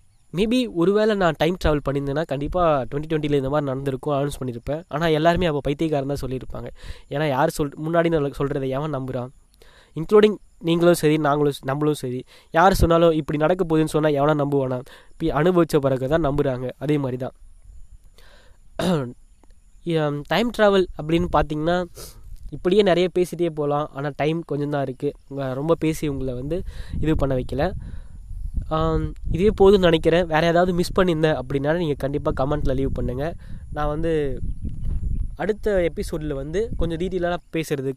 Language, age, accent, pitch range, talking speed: Tamil, 20-39, native, 135-165 Hz, 140 wpm